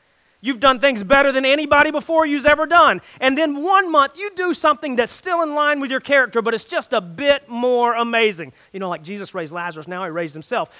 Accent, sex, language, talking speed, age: American, male, English, 230 wpm, 40-59